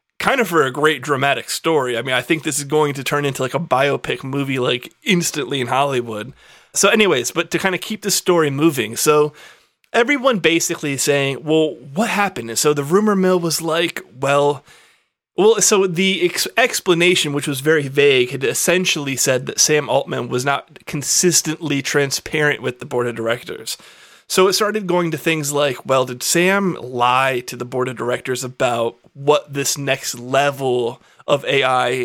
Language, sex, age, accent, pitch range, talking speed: English, male, 30-49, American, 135-165 Hz, 180 wpm